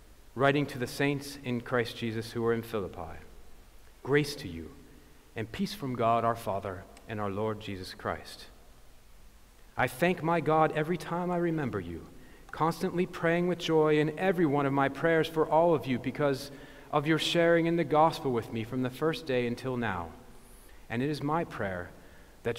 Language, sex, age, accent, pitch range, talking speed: English, male, 40-59, American, 120-155 Hz, 185 wpm